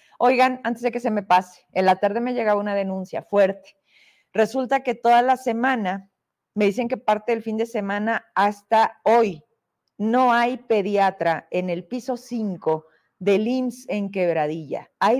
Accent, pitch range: Mexican, 200-250 Hz